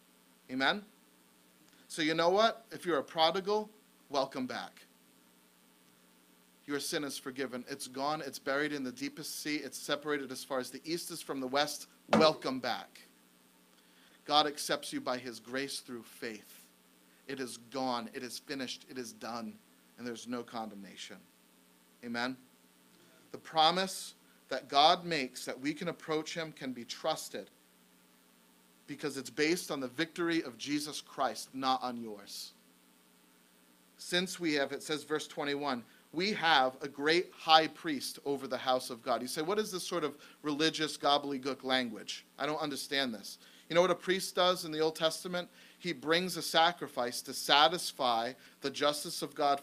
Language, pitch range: English, 120-160 Hz